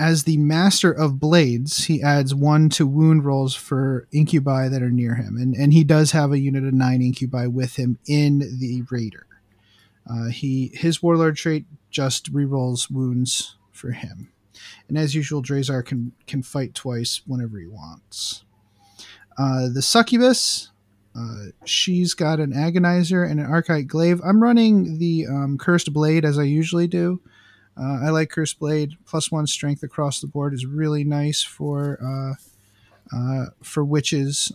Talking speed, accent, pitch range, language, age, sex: 165 wpm, American, 125-160 Hz, English, 30-49, male